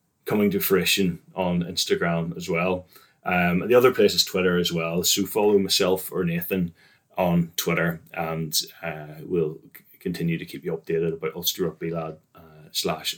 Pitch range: 90-120 Hz